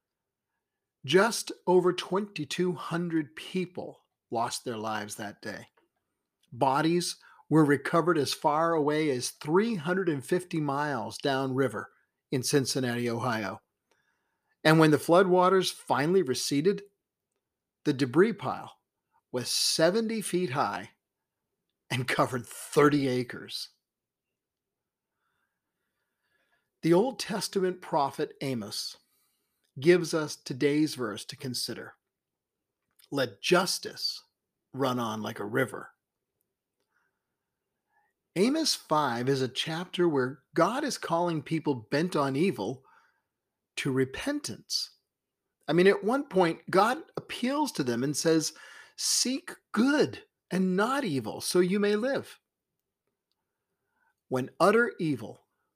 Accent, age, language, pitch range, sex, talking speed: American, 50-69, English, 135-190 Hz, male, 100 wpm